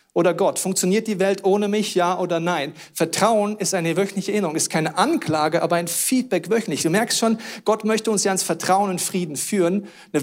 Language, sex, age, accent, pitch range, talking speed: German, male, 40-59, German, 175-220 Hz, 205 wpm